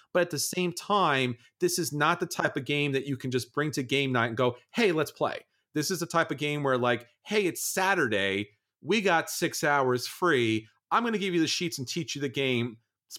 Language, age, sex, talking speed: English, 30-49, male, 245 wpm